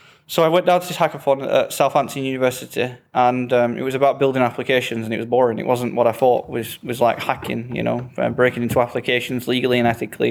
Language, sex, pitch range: English, male, 120-140 Hz